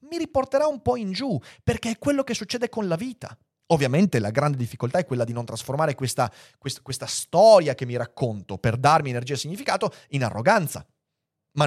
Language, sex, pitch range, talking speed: Italian, male, 125-200 Hz, 195 wpm